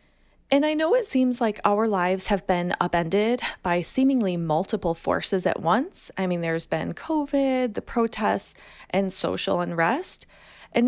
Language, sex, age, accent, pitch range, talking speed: English, female, 20-39, American, 175-245 Hz, 155 wpm